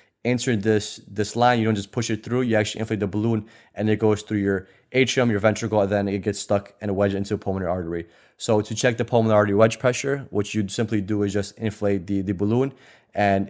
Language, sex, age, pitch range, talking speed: English, male, 20-39, 100-110 Hz, 235 wpm